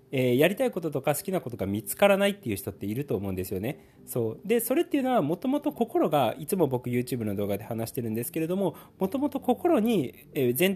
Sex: male